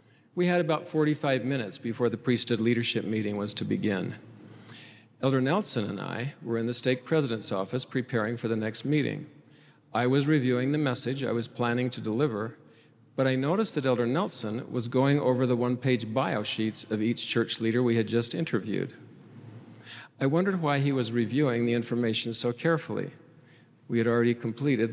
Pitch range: 115-140 Hz